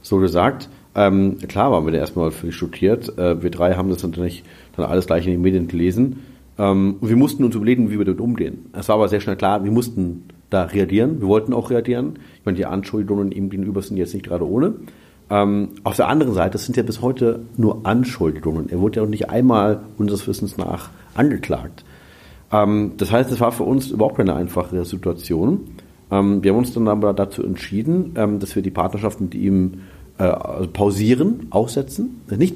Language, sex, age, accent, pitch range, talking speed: German, male, 40-59, German, 95-120 Hz, 200 wpm